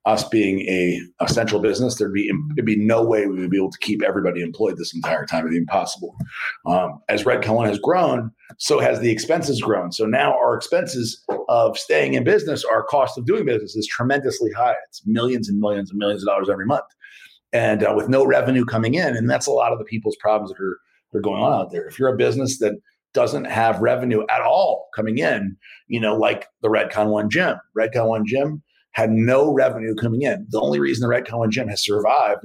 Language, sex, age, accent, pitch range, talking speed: English, male, 40-59, American, 105-130 Hz, 225 wpm